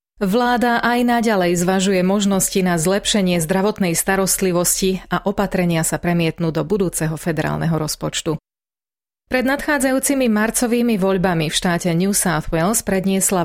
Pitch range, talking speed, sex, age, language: 170-210 Hz, 120 wpm, female, 30-49, Slovak